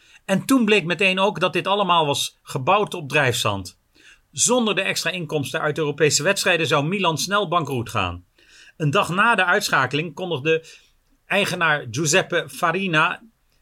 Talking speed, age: 150 wpm, 40-59